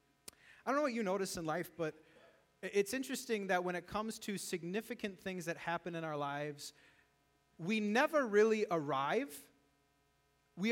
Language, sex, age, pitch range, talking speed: English, male, 30-49, 170-225 Hz, 155 wpm